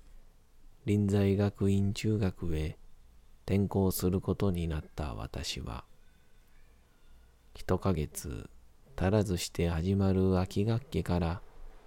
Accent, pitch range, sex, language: native, 80-100 Hz, male, Japanese